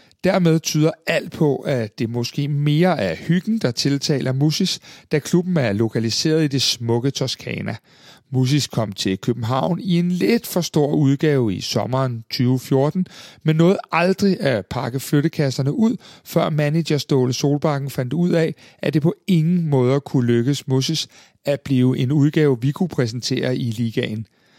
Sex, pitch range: male, 130-170 Hz